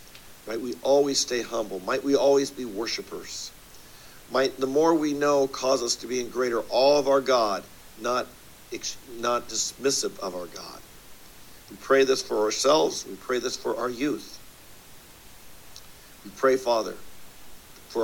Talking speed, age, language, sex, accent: 155 wpm, 50-69, English, male, American